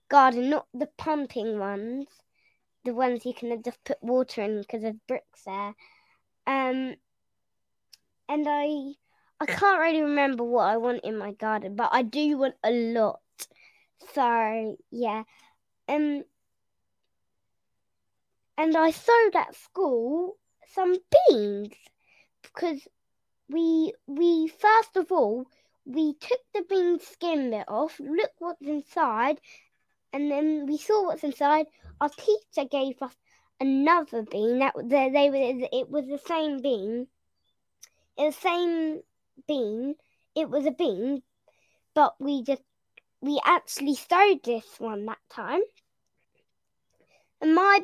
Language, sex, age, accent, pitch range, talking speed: English, female, 10-29, British, 245-315 Hz, 125 wpm